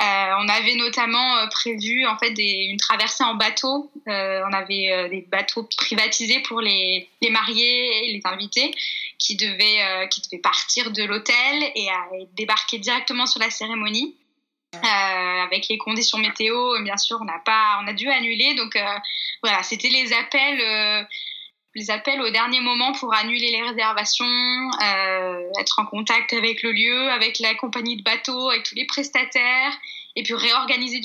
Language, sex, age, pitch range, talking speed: French, female, 10-29, 210-255 Hz, 175 wpm